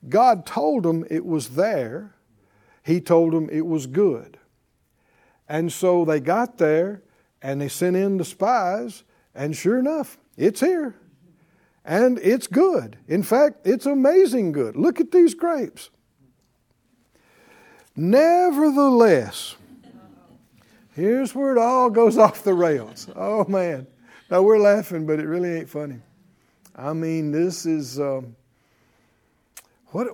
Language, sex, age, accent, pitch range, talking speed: English, male, 60-79, American, 160-235 Hz, 130 wpm